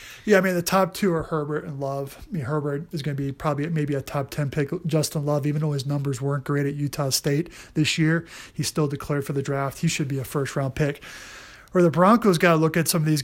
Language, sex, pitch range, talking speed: English, male, 140-160 Hz, 265 wpm